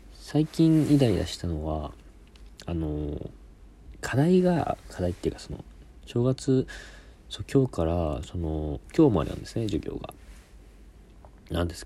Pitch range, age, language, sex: 75-100 Hz, 40-59, Japanese, male